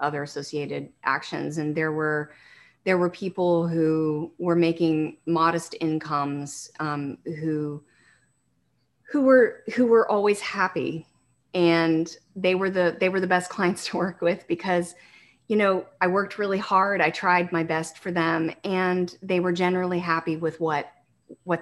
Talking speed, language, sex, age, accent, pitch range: 155 wpm, English, female, 30-49, American, 160-185 Hz